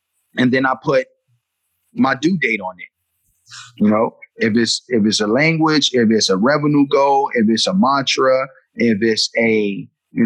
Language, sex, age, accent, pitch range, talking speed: English, male, 30-49, American, 125-205 Hz, 175 wpm